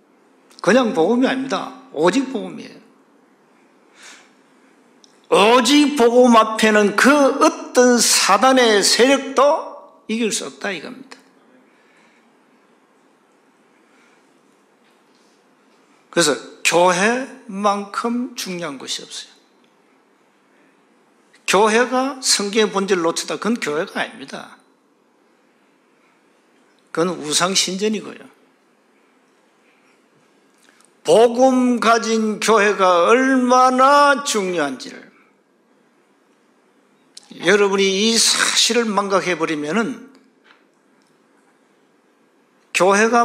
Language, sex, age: Korean, male, 50-69